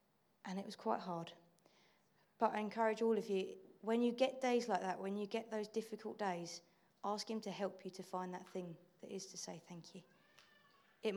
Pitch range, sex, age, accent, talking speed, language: 175-210 Hz, female, 20-39, British, 210 wpm, English